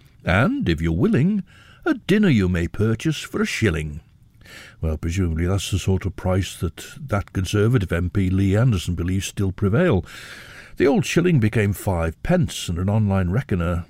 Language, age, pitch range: English, 60-79, 85-135 Hz